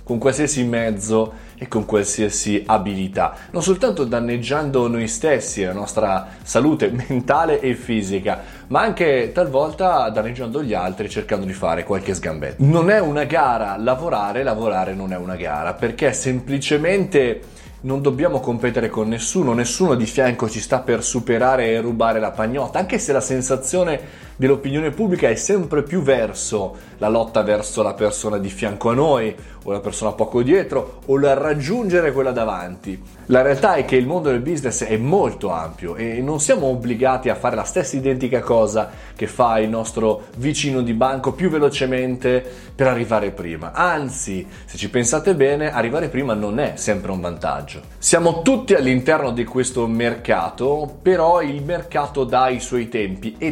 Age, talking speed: 20-39, 165 wpm